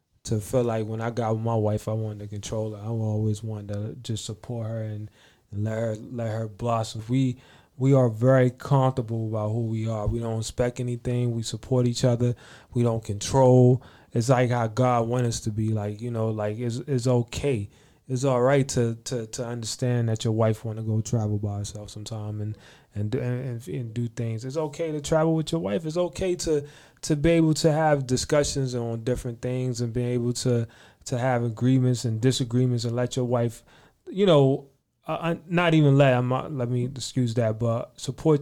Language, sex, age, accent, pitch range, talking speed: English, male, 20-39, American, 115-135 Hz, 205 wpm